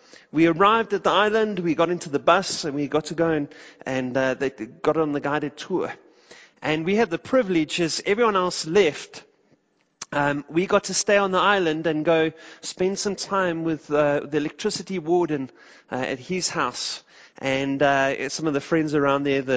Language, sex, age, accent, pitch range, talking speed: English, male, 30-49, British, 150-200 Hz, 195 wpm